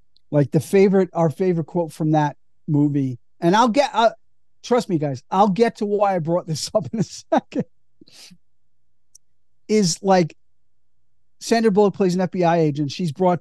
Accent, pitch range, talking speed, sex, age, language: American, 150-215 Hz, 165 wpm, male, 40-59, English